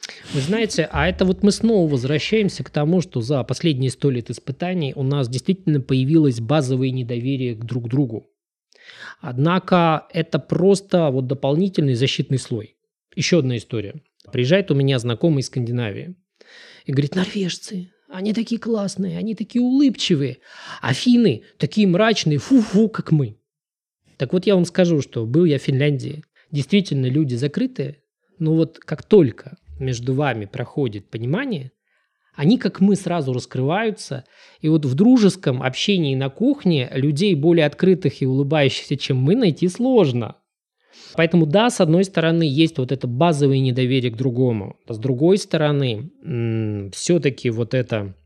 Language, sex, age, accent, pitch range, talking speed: Russian, male, 20-39, native, 130-185 Hz, 145 wpm